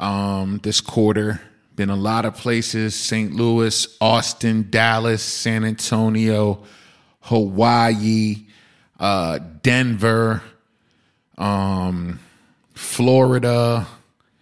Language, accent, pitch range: English, American, 105-120 Hz